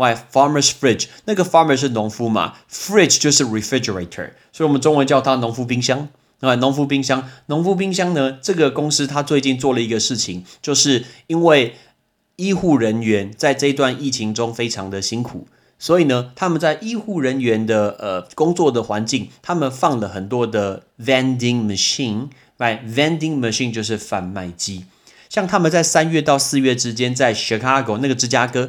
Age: 30-49